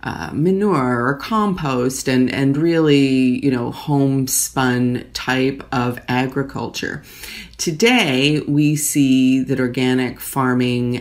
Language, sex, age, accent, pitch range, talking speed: English, female, 30-49, American, 125-150 Hz, 105 wpm